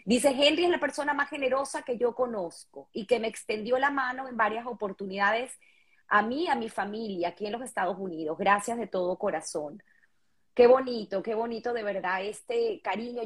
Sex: female